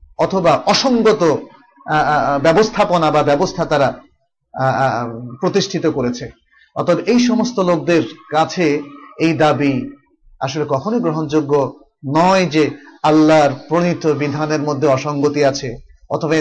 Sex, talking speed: male, 100 wpm